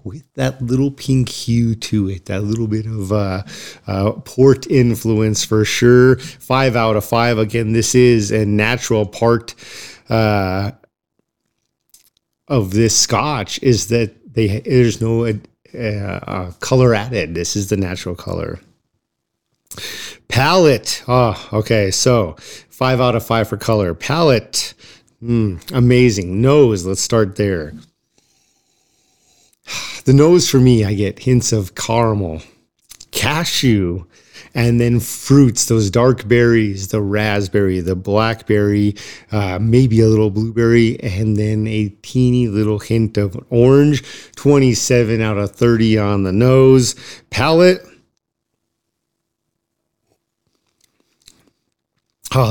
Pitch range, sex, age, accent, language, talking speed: 105-125 Hz, male, 40-59, American, English, 120 wpm